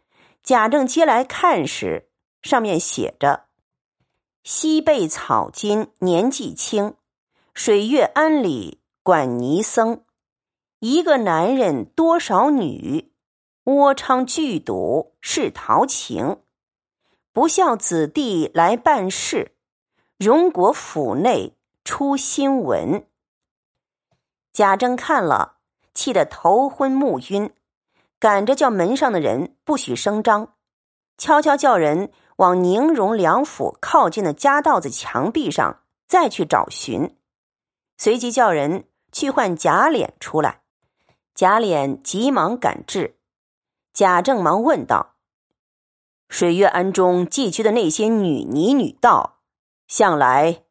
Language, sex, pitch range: Chinese, female, 200-295 Hz